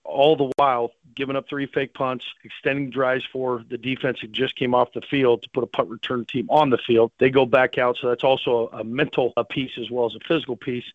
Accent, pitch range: American, 120-130 Hz